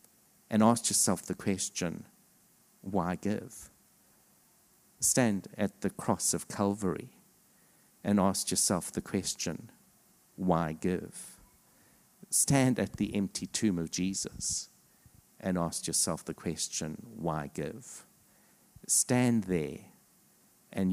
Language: English